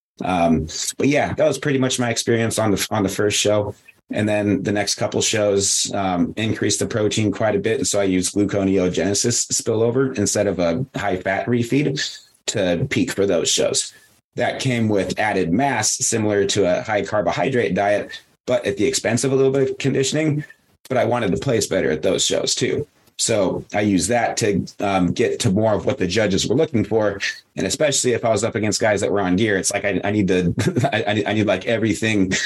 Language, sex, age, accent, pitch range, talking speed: English, male, 30-49, American, 95-120 Hz, 215 wpm